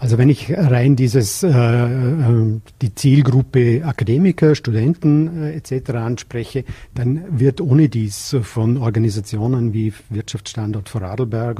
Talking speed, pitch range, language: 115 wpm, 115-140 Hz, German